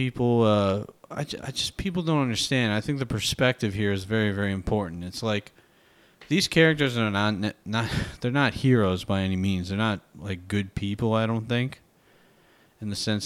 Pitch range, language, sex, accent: 100-120 Hz, English, male, American